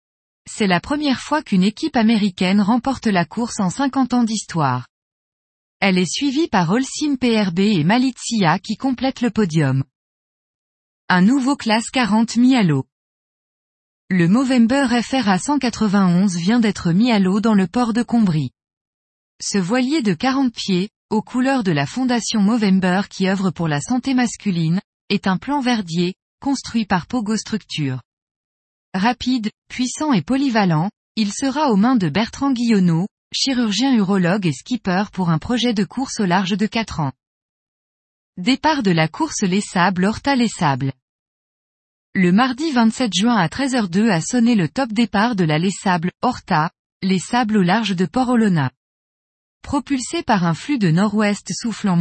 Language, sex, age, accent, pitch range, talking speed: French, female, 20-39, French, 180-245 Hz, 155 wpm